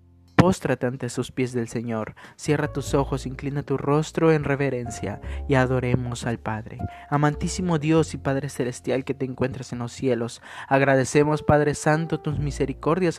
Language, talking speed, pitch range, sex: Spanish, 155 wpm, 130-155 Hz, male